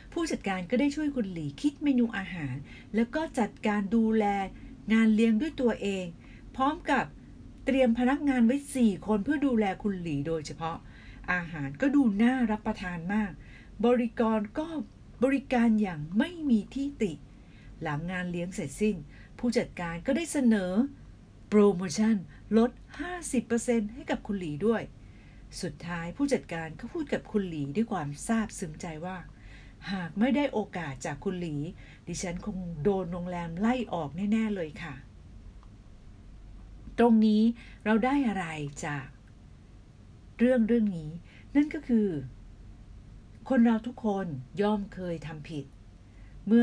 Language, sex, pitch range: Thai, female, 150-235 Hz